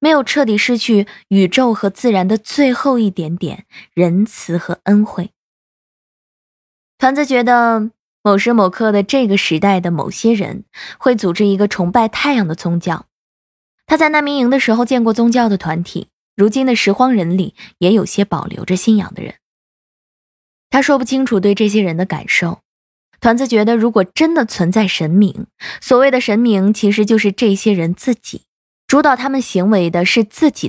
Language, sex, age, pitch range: Chinese, female, 20-39, 180-245 Hz